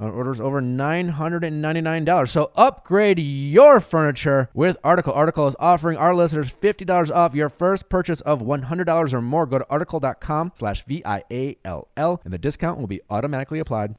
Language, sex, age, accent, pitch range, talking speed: English, male, 30-49, American, 140-215 Hz, 170 wpm